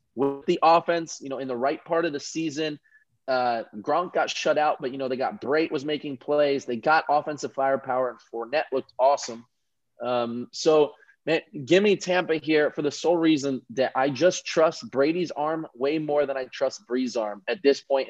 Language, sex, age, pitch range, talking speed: English, male, 20-39, 130-160 Hz, 200 wpm